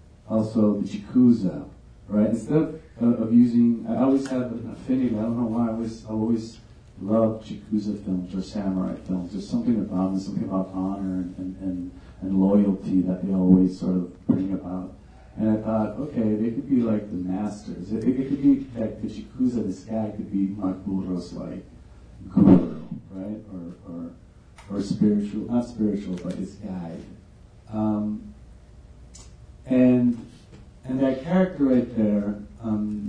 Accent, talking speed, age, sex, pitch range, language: American, 160 wpm, 40-59, male, 95-125 Hz, English